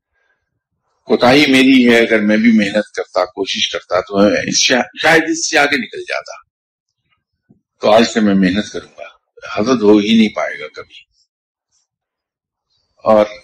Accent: Indian